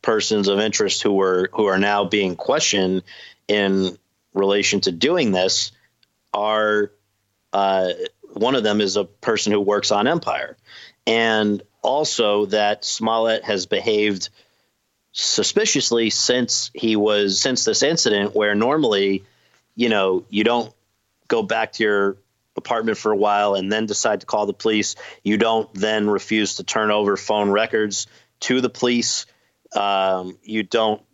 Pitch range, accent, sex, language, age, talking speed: 100-115 Hz, American, male, English, 40-59, 145 wpm